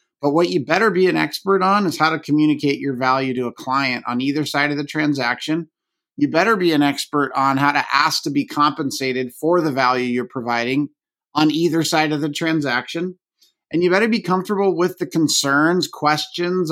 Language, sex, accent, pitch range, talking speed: English, male, American, 140-175 Hz, 195 wpm